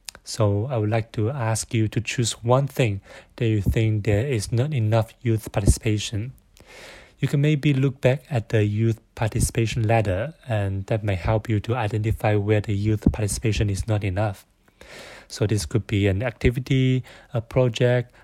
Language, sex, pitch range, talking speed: Indonesian, male, 105-125 Hz, 170 wpm